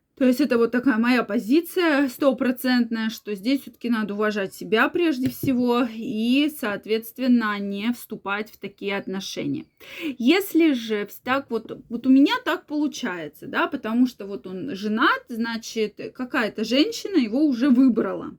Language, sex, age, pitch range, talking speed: Russian, female, 20-39, 220-285 Hz, 145 wpm